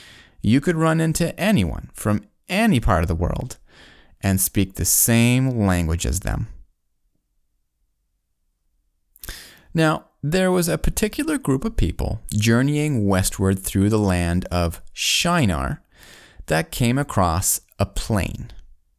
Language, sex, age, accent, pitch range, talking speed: English, male, 30-49, American, 90-145 Hz, 120 wpm